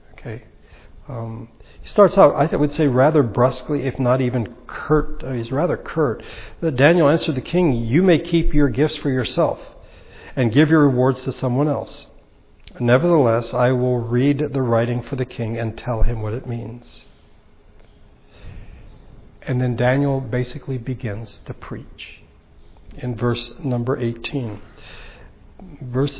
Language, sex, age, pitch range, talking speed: English, male, 60-79, 125-145 Hz, 145 wpm